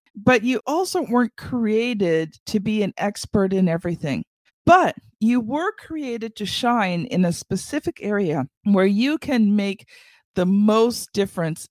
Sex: female